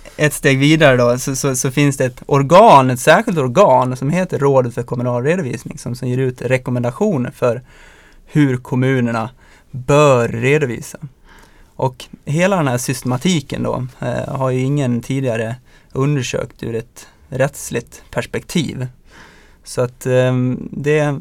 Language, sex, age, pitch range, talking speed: Swedish, male, 20-39, 125-145 Hz, 135 wpm